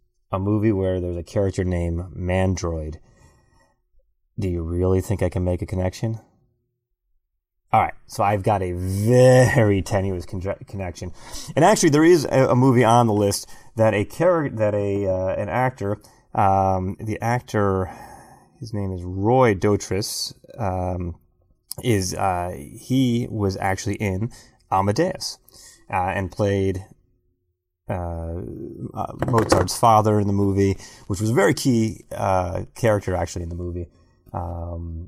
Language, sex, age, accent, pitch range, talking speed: English, male, 30-49, American, 90-110 Hz, 140 wpm